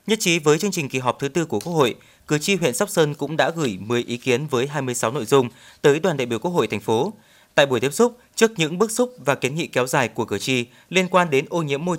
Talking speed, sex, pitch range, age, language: 285 wpm, male, 125-170 Hz, 20-39, Vietnamese